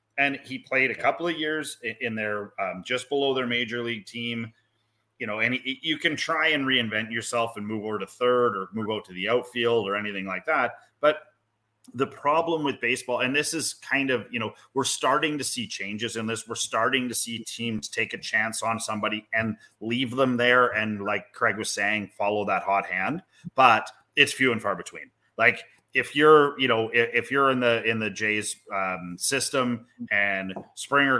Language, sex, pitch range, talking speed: English, male, 105-130 Hz, 200 wpm